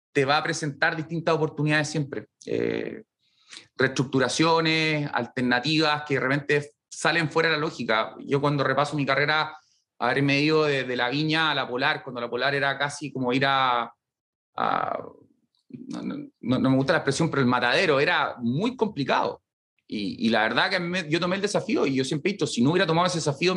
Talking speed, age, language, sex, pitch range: 190 wpm, 30-49, English, male, 130-165 Hz